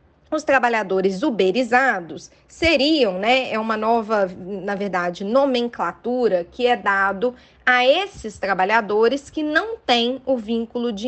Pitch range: 210-265 Hz